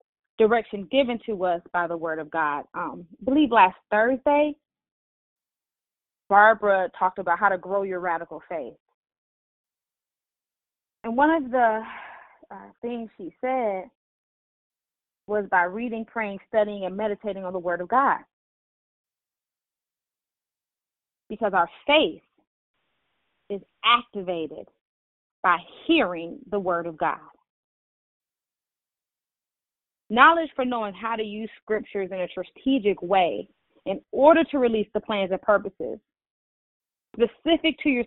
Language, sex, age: English, female, 20-39